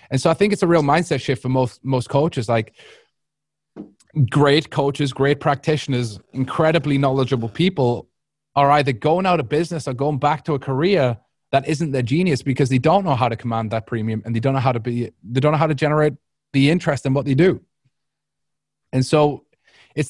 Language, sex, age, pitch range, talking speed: English, male, 30-49, 125-150 Hz, 205 wpm